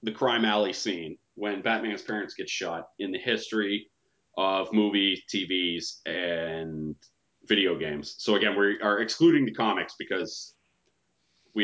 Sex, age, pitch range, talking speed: male, 30-49, 95-115 Hz, 140 wpm